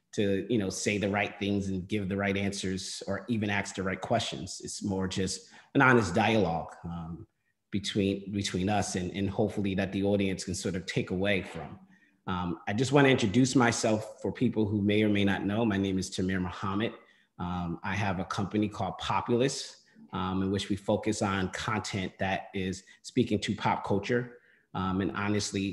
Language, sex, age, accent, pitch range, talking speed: English, male, 30-49, American, 95-110 Hz, 185 wpm